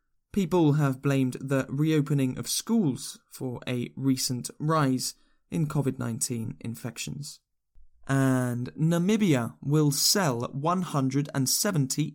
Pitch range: 125-155 Hz